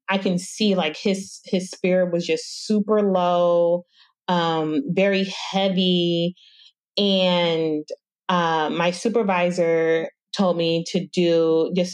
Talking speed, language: 115 wpm, English